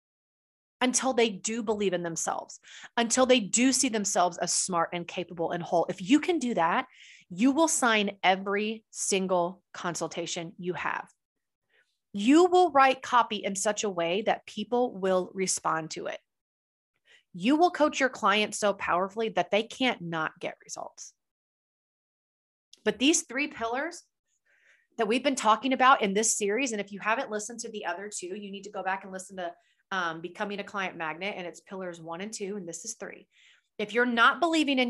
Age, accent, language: 30-49, American, English